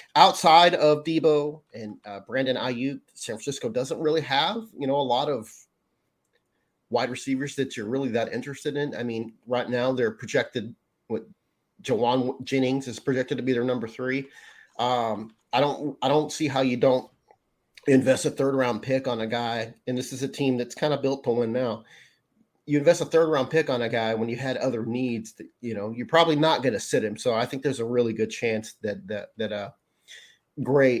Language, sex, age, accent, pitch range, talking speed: English, male, 30-49, American, 120-150 Hz, 205 wpm